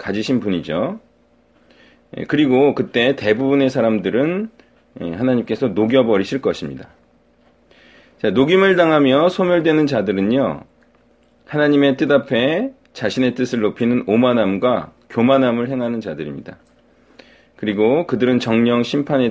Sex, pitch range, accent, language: male, 120-160 Hz, native, Korean